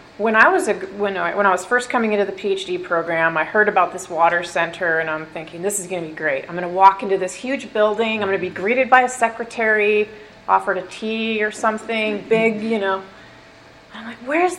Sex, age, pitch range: female, 30-49, 180-235 Hz